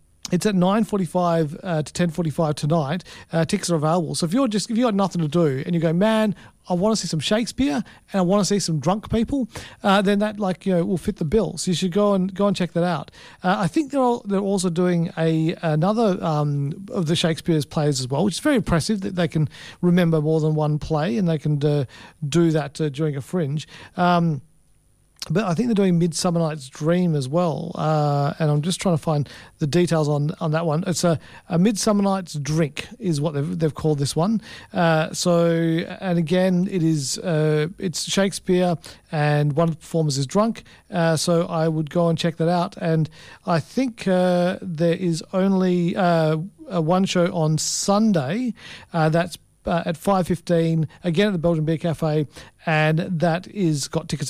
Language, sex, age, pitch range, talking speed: English, male, 50-69, 155-190 Hz, 210 wpm